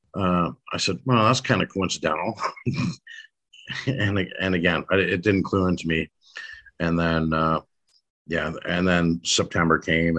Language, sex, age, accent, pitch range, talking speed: English, male, 50-69, American, 80-95 Hz, 145 wpm